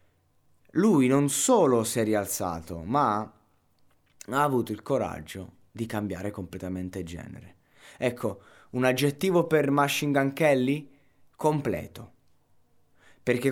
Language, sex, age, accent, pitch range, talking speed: Italian, male, 20-39, native, 100-135 Hz, 105 wpm